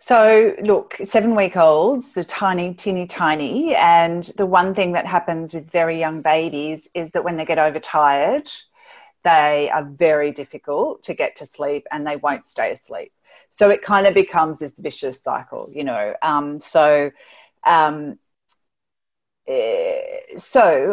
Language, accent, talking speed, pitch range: English, Australian, 145 wpm, 145-195 Hz